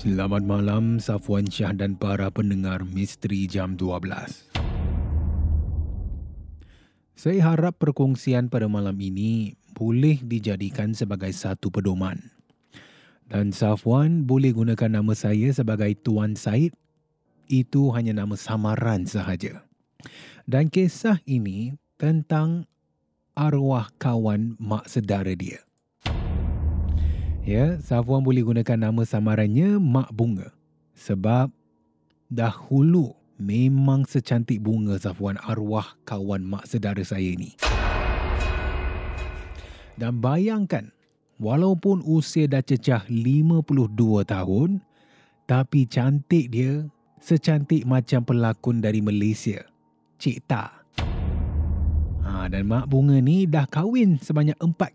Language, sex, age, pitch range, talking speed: Malay, male, 30-49, 95-135 Hz, 100 wpm